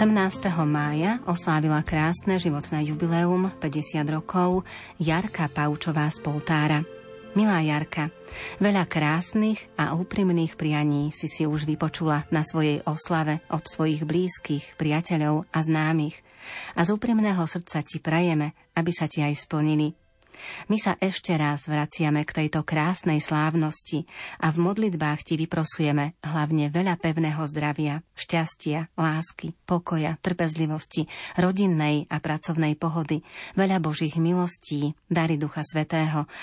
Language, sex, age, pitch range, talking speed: Slovak, female, 30-49, 150-170 Hz, 125 wpm